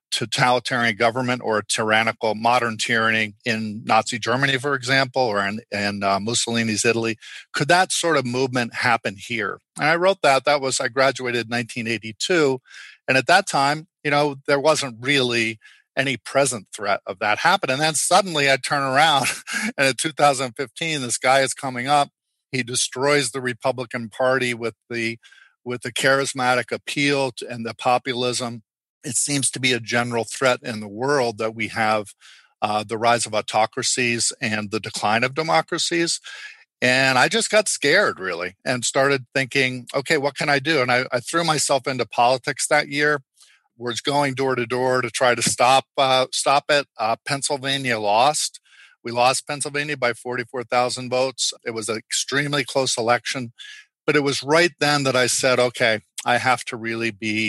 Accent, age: American, 50-69